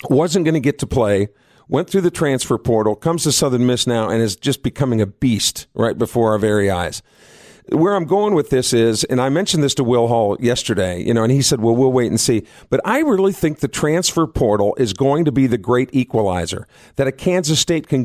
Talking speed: 235 wpm